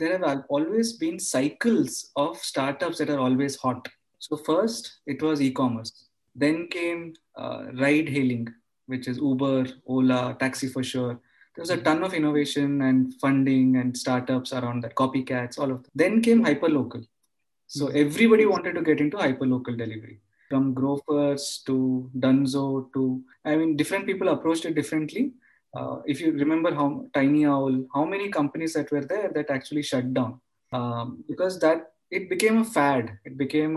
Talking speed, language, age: 165 wpm, English, 20-39